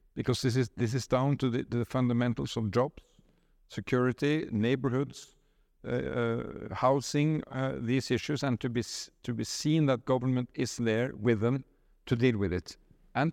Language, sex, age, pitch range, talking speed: English, male, 50-69, 120-145 Hz, 170 wpm